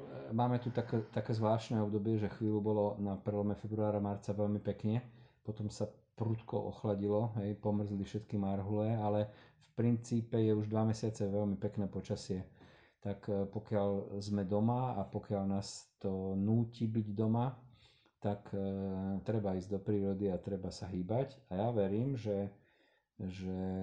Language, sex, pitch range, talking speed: Slovak, male, 95-105 Hz, 150 wpm